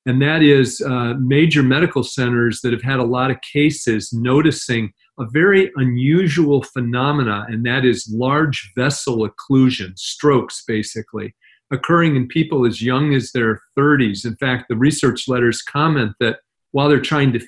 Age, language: 40-59, English